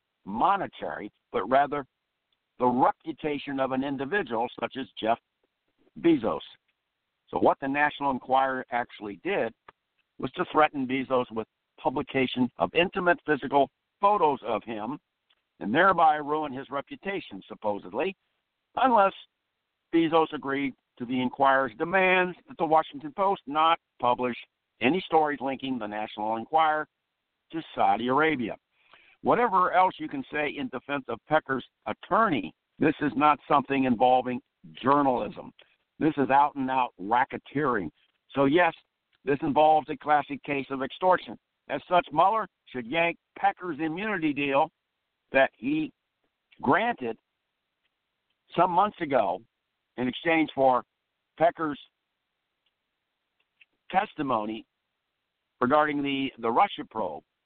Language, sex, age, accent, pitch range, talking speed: English, male, 60-79, American, 130-165 Hz, 115 wpm